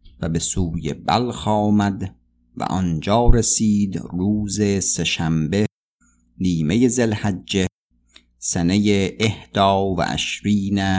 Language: Persian